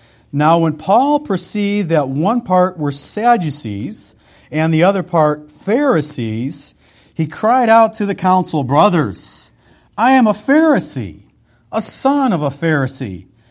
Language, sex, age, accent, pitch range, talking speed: English, male, 50-69, American, 125-175 Hz, 135 wpm